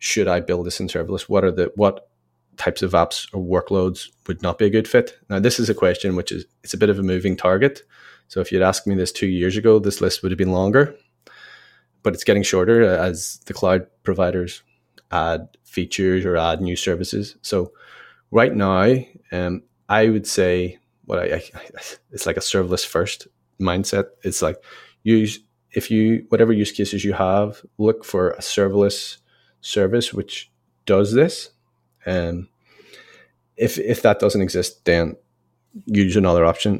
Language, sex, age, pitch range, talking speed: German, male, 20-39, 90-105 Hz, 175 wpm